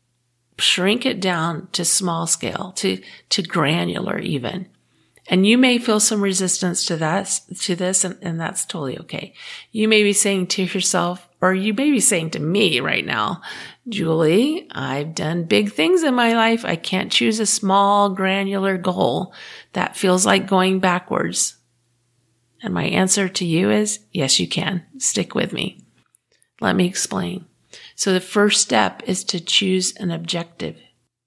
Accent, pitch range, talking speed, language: American, 175-210 Hz, 160 wpm, English